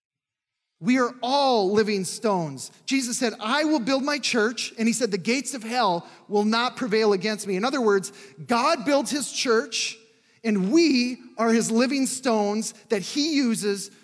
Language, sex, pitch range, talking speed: English, male, 175-220 Hz, 170 wpm